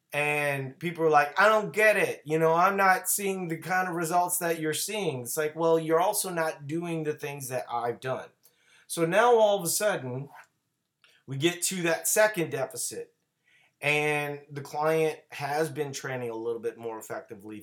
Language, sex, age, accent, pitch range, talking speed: English, male, 30-49, American, 130-165 Hz, 185 wpm